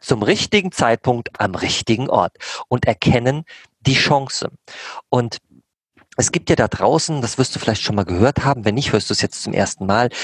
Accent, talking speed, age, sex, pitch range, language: German, 195 wpm, 40-59, male, 115-155 Hz, German